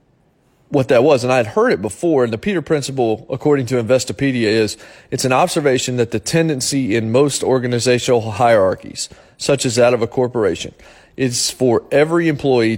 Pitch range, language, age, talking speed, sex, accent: 115-145 Hz, English, 30-49, 175 wpm, male, American